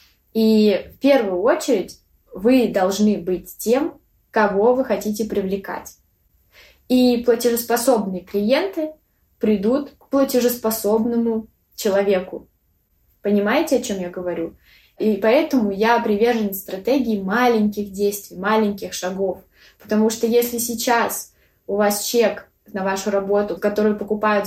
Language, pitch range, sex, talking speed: Russian, 200-235 Hz, female, 110 wpm